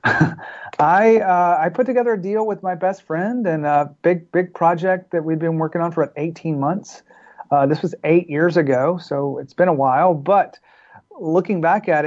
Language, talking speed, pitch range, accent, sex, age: English, 200 wpm, 140-175 Hz, American, male, 40-59